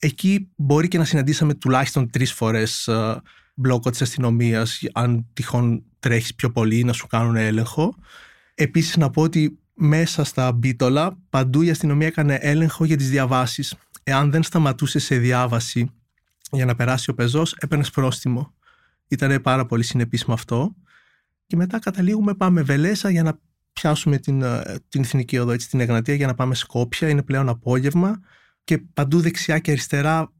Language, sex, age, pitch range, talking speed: Greek, male, 30-49, 125-160 Hz, 155 wpm